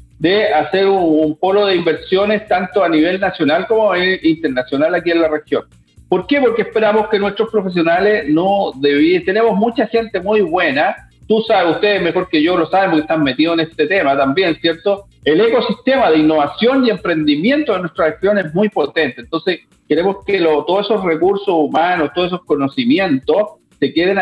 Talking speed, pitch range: 180 wpm, 155-210 Hz